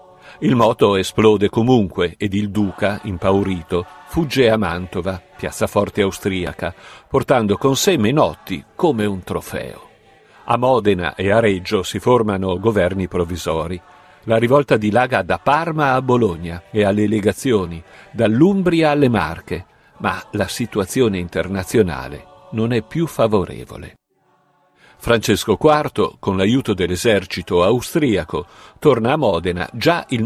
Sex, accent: male, native